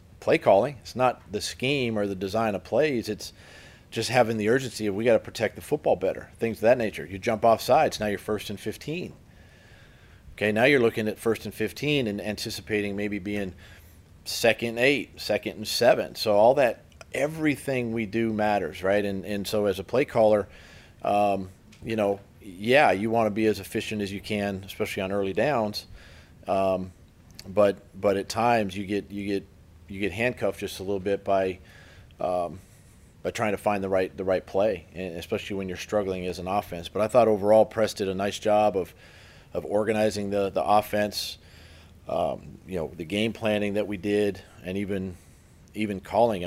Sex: male